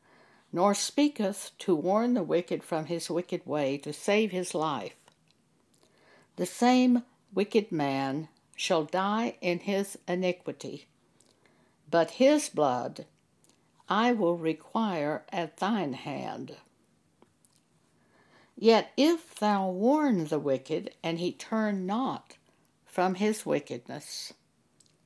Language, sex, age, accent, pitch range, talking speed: English, female, 60-79, American, 170-230 Hz, 110 wpm